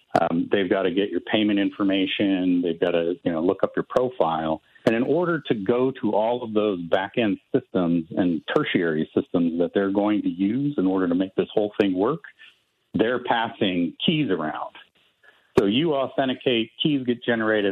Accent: American